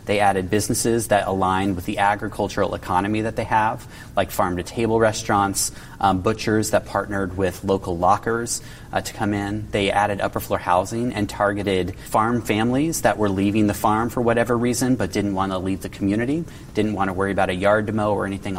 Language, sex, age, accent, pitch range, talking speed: English, male, 30-49, American, 95-115 Hz, 195 wpm